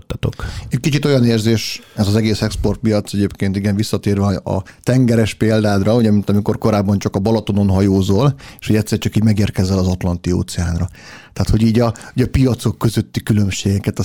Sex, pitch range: male, 95-115 Hz